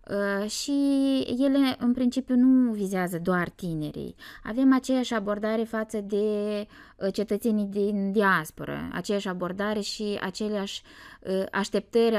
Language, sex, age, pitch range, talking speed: Romanian, female, 20-39, 180-225 Hz, 105 wpm